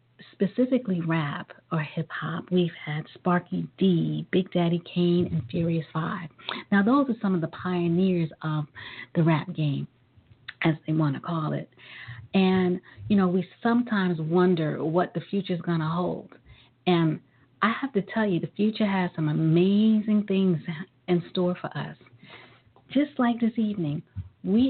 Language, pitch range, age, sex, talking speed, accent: English, 155-185 Hz, 40-59, female, 160 wpm, American